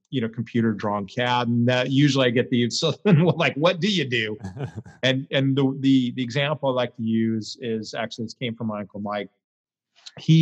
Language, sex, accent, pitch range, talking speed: English, male, American, 110-125 Hz, 205 wpm